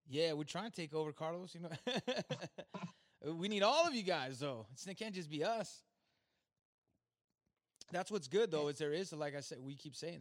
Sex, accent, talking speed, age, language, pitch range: male, American, 200 wpm, 20-39, English, 130-170 Hz